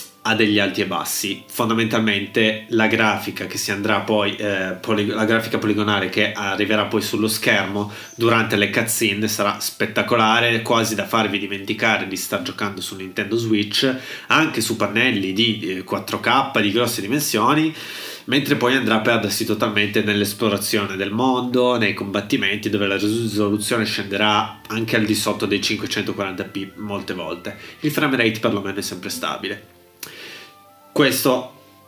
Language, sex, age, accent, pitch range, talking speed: Italian, male, 30-49, native, 105-115 Hz, 145 wpm